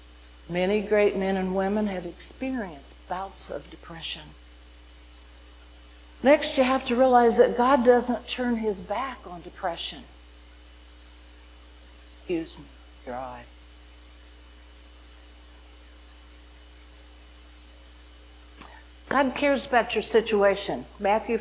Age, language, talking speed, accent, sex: 60-79, English, 95 wpm, American, female